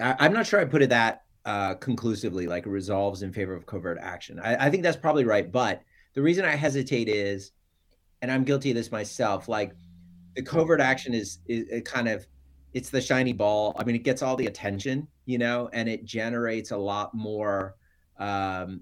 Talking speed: 200 wpm